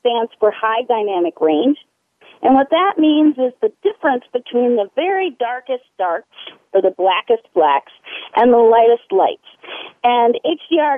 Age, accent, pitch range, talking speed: 40-59, American, 215-290 Hz, 150 wpm